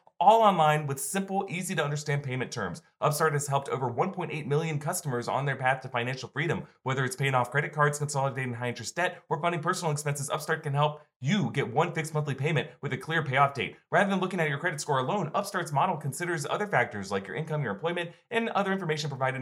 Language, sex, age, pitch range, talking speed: English, male, 30-49, 130-175 Hz, 215 wpm